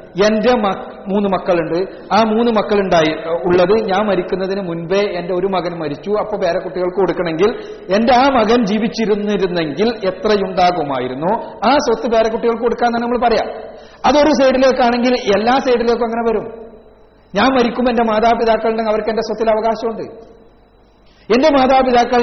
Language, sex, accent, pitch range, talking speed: Malayalam, male, native, 205-235 Hz, 125 wpm